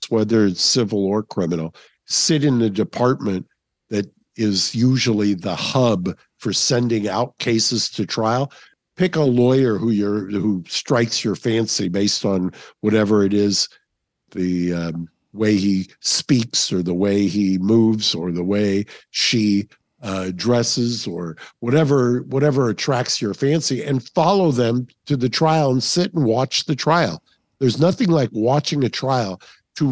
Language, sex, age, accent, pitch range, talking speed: English, male, 50-69, American, 105-135 Hz, 150 wpm